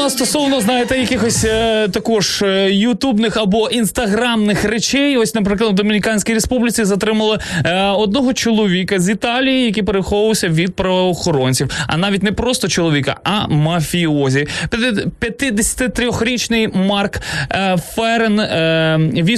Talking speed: 110 wpm